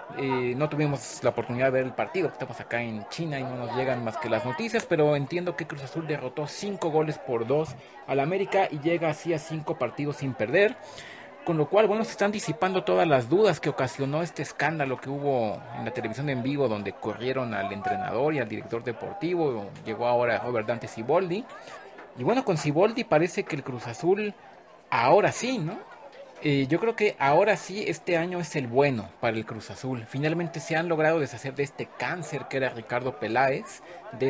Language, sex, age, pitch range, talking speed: Spanish, male, 40-59, 120-165 Hz, 200 wpm